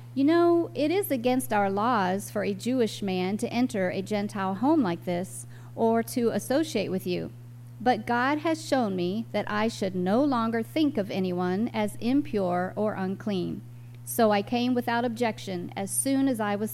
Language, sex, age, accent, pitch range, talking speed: English, female, 40-59, American, 180-255 Hz, 180 wpm